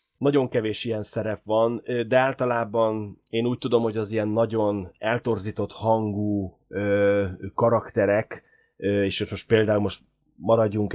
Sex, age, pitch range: male, 30-49, 95-110 Hz